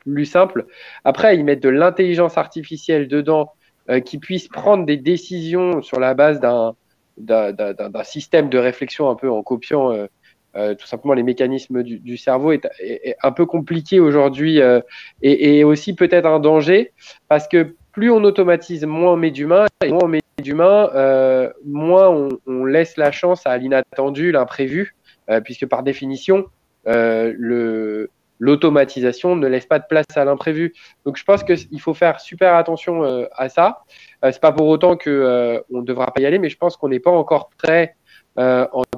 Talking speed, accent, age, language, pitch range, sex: 190 wpm, French, 20-39, French, 130-170 Hz, male